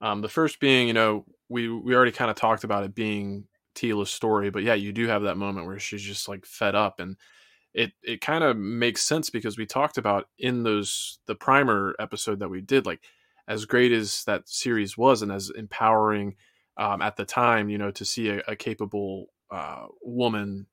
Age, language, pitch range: 20-39, English, 100-120 Hz